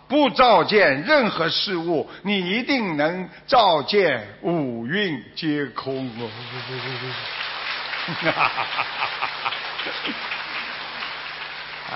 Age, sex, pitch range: 50-69, male, 170-240 Hz